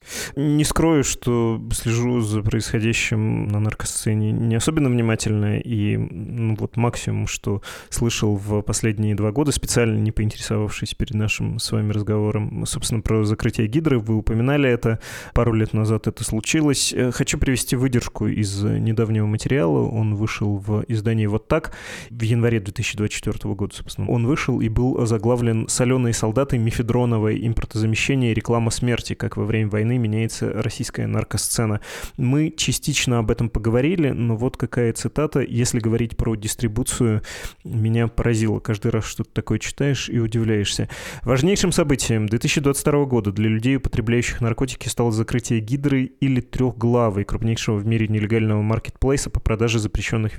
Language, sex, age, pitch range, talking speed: Russian, male, 20-39, 110-125 Hz, 140 wpm